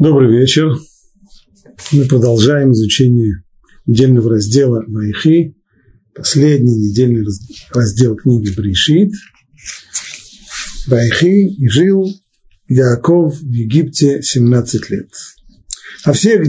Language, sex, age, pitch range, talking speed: Russian, male, 50-69, 115-155 Hz, 80 wpm